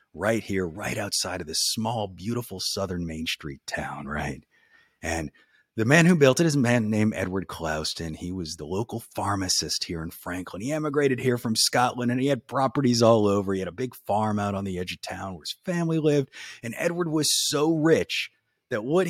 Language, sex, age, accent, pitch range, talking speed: English, male, 30-49, American, 90-135 Hz, 205 wpm